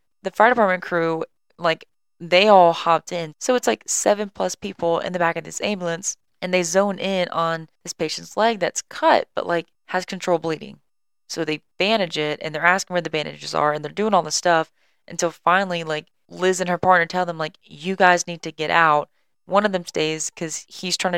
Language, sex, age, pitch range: English, female, 20-39, 155-180 Hz